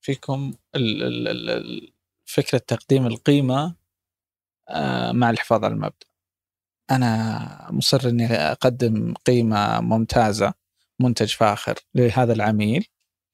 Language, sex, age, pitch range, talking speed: Arabic, male, 20-39, 110-130 Hz, 80 wpm